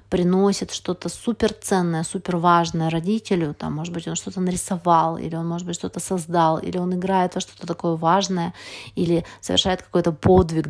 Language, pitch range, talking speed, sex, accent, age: Russian, 170-195 Hz, 170 wpm, female, native, 30-49